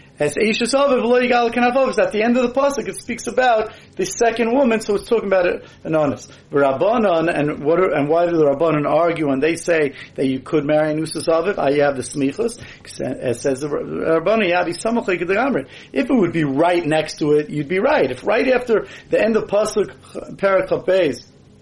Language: English